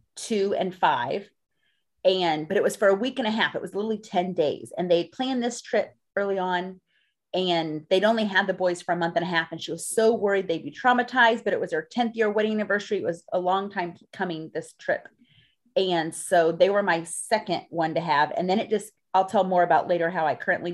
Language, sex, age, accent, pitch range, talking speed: English, female, 30-49, American, 170-215 Hz, 235 wpm